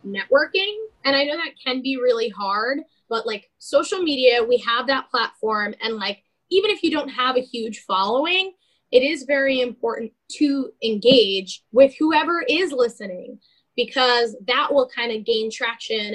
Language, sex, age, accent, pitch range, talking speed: English, female, 10-29, American, 230-295 Hz, 165 wpm